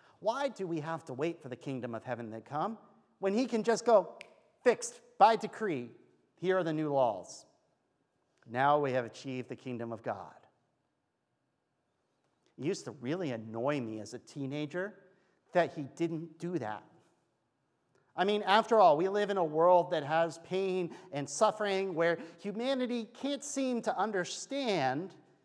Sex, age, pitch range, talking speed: male, 40-59, 135-195 Hz, 160 wpm